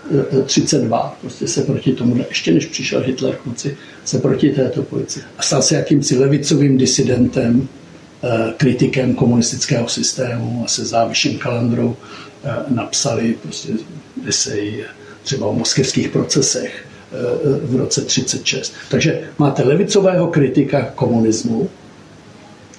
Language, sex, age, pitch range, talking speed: Czech, male, 60-79, 120-145 Hz, 120 wpm